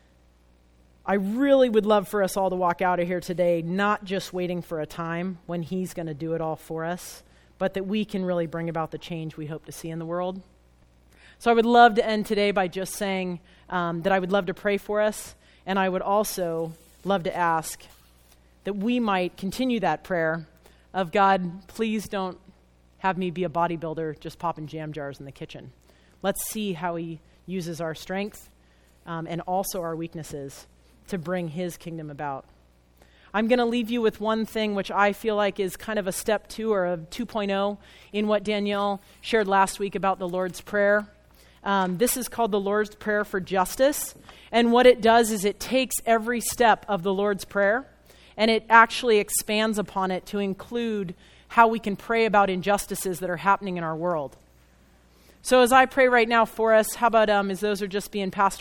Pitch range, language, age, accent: 165-210 Hz, English, 30-49, American